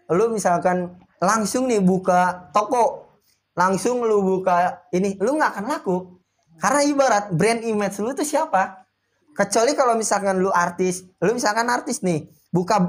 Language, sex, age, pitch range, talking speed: Indonesian, male, 20-39, 160-200 Hz, 145 wpm